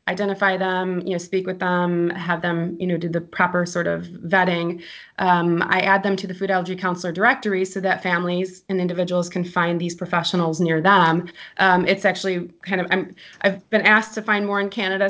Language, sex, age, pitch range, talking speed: English, female, 20-39, 175-195 Hz, 205 wpm